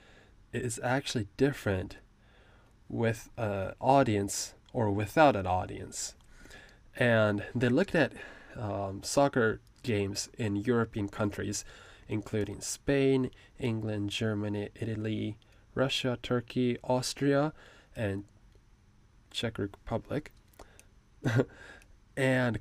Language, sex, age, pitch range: Japanese, male, 20-39, 100-125 Hz